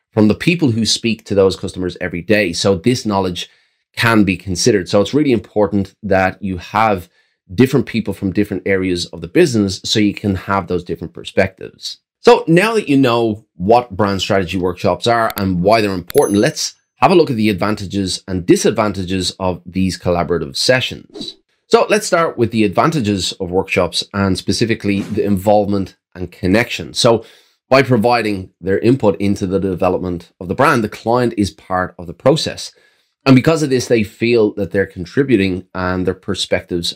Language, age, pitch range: English, 30-49, 90-110 Hz